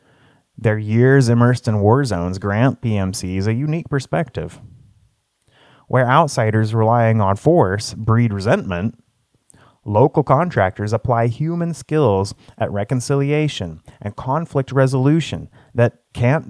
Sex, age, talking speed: male, 30-49, 110 wpm